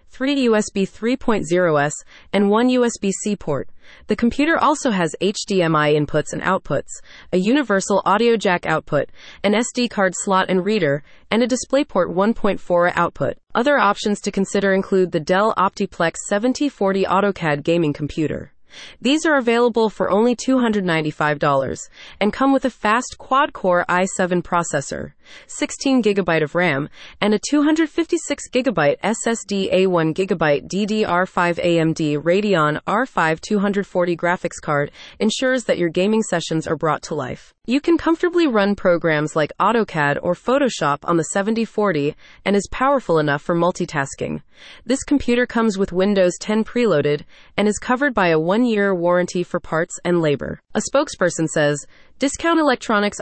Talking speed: 140 wpm